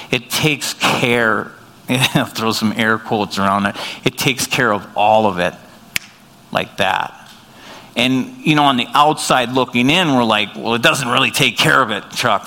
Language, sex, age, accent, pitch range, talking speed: English, male, 50-69, American, 115-150 Hz, 185 wpm